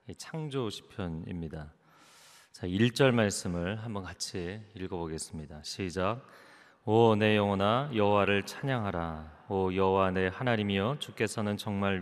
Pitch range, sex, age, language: 95-115 Hz, male, 30-49, Korean